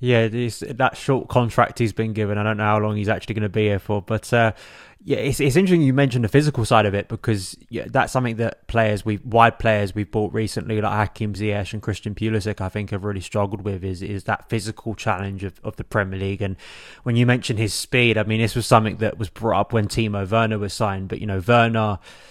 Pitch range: 100-115 Hz